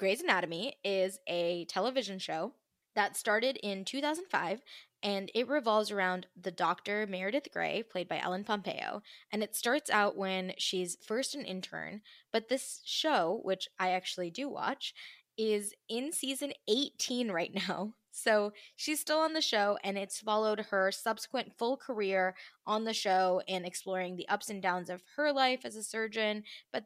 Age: 20-39